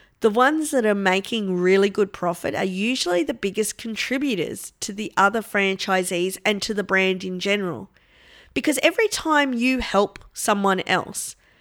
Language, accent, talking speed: English, Australian, 155 wpm